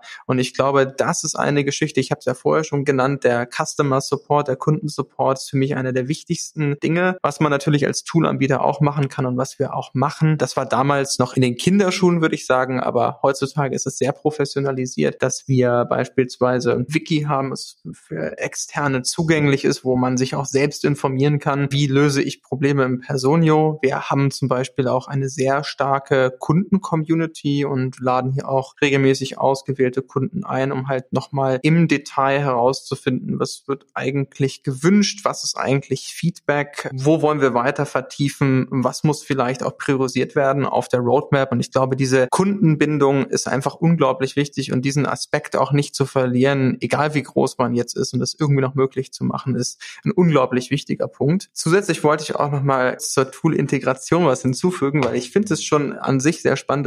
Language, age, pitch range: German, 20-39, 130-150 Hz